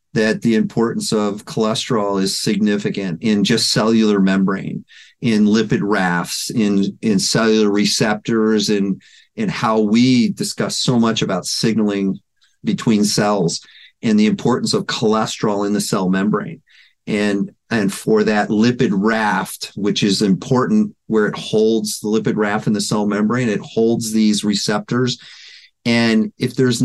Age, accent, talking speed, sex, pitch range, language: 40-59, American, 145 wpm, male, 105-135 Hz, English